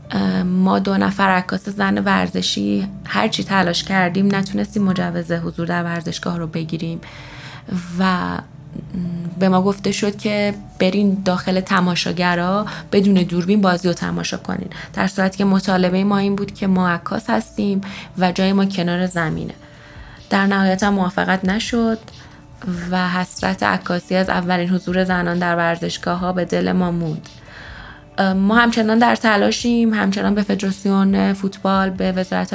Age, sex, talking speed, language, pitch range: 20-39, female, 140 wpm, Persian, 170-195 Hz